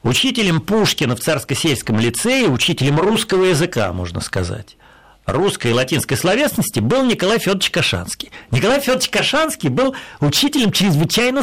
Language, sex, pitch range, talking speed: Russian, male, 135-210 Hz, 125 wpm